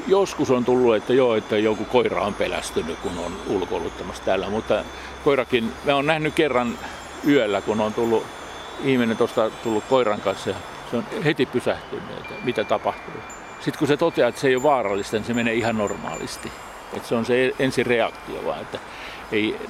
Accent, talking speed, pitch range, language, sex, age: native, 175 wpm, 115-145 Hz, Finnish, male, 50-69